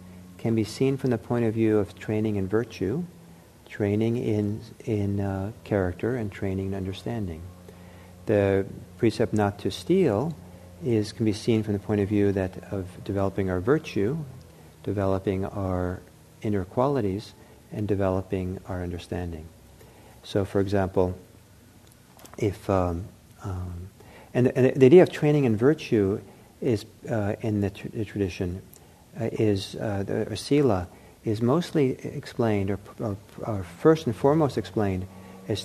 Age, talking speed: 50-69, 140 wpm